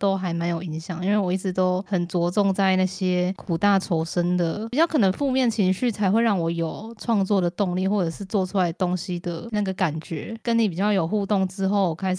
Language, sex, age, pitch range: Chinese, female, 20-39, 180-220 Hz